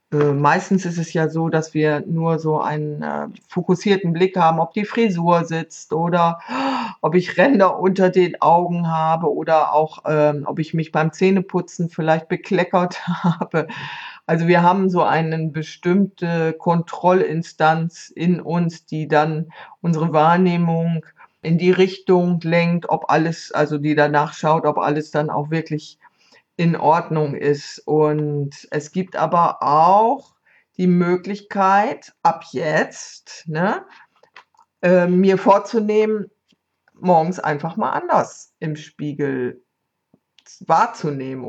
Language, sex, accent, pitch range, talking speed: German, female, German, 155-180 Hz, 125 wpm